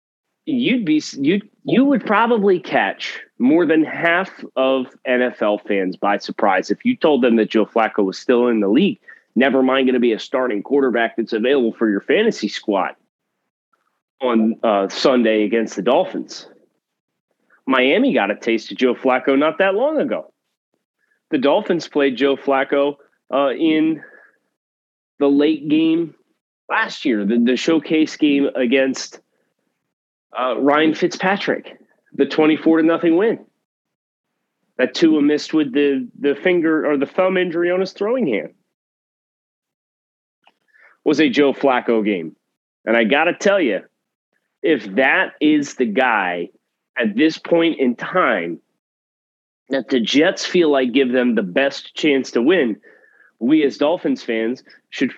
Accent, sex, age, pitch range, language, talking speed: American, male, 30-49, 125-165 Hz, English, 150 wpm